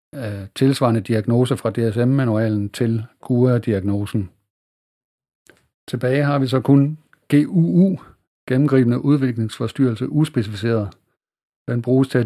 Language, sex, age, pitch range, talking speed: Danish, male, 50-69, 110-135 Hz, 110 wpm